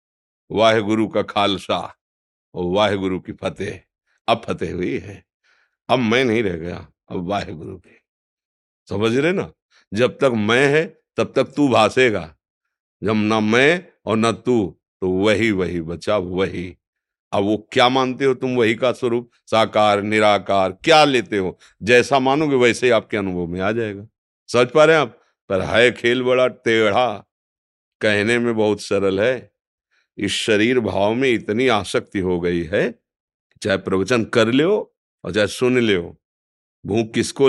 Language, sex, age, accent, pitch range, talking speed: Hindi, male, 50-69, native, 95-115 Hz, 160 wpm